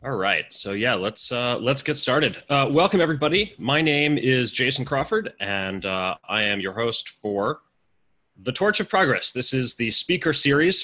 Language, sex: English, male